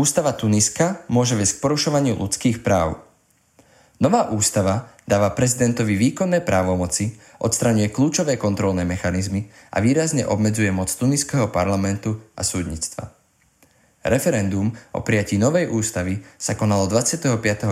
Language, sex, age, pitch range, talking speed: Slovak, male, 20-39, 95-120 Hz, 115 wpm